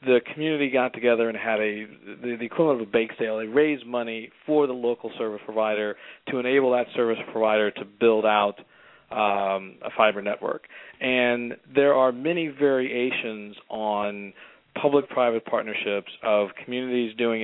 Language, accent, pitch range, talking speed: English, American, 110-125 Hz, 155 wpm